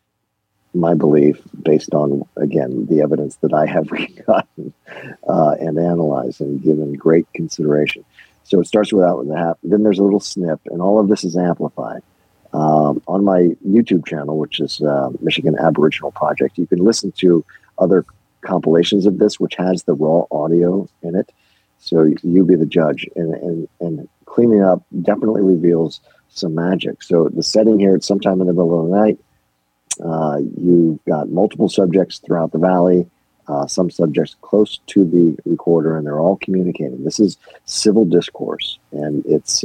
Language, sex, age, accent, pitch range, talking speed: English, male, 50-69, American, 80-95 Hz, 170 wpm